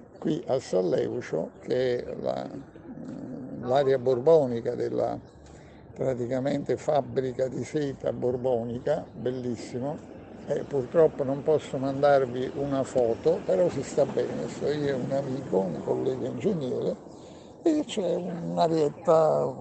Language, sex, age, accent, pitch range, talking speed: Italian, male, 60-79, native, 130-160 Hz, 115 wpm